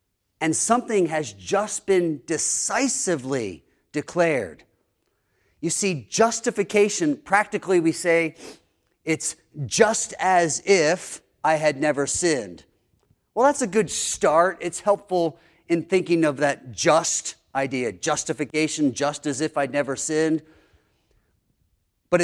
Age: 40-59